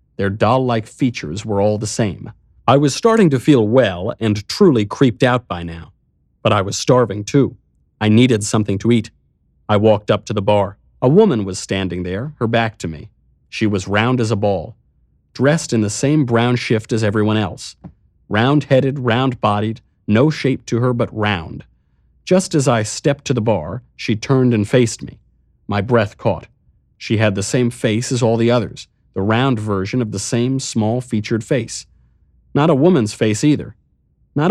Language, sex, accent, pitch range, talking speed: English, male, American, 95-125 Hz, 185 wpm